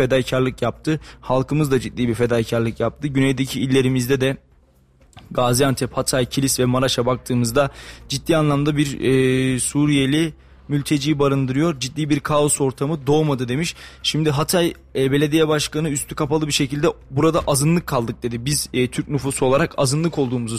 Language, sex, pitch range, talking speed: Turkish, male, 125-150 Hz, 145 wpm